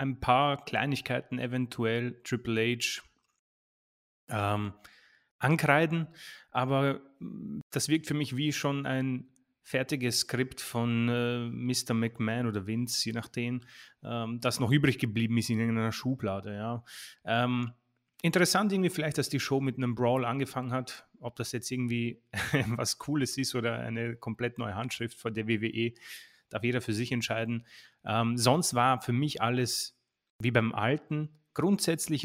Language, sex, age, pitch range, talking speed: German, male, 30-49, 115-135 Hz, 145 wpm